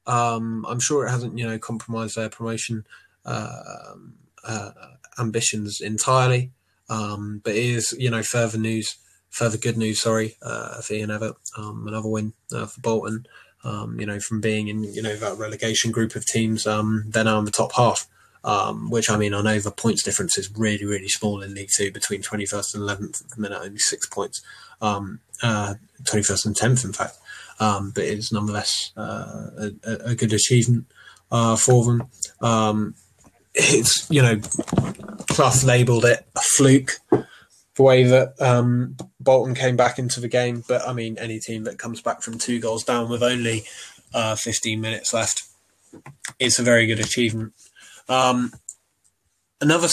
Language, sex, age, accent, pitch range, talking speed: English, male, 20-39, British, 105-125 Hz, 175 wpm